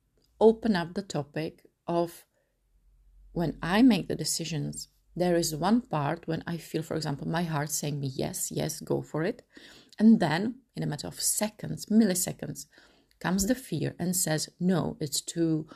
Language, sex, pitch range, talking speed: English, female, 155-195 Hz, 170 wpm